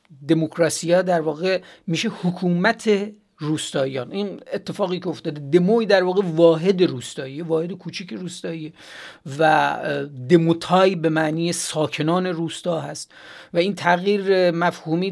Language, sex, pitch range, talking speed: Persian, male, 145-180 Hz, 120 wpm